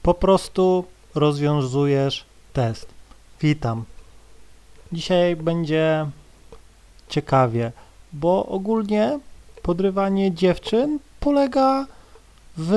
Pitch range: 115-180 Hz